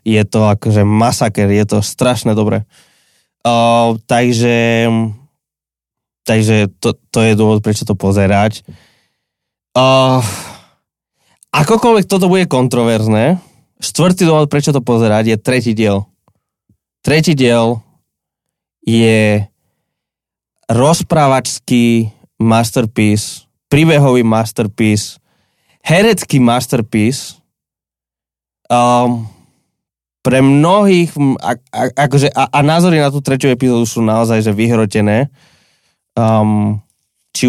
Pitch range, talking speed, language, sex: 110-135 Hz, 95 wpm, Slovak, male